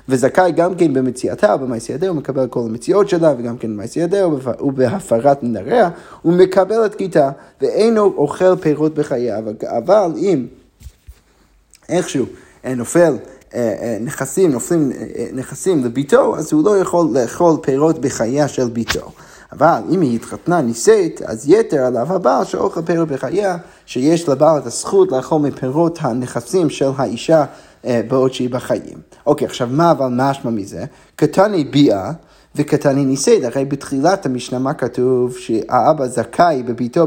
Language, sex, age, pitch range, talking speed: Hebrew, male, 30-49, 130-175 Hz, 135 wpm